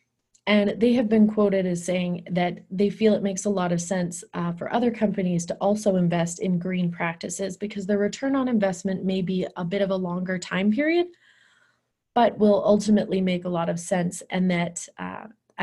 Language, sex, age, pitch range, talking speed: English, female, 20-39, 180-210 Hz, 195 wpm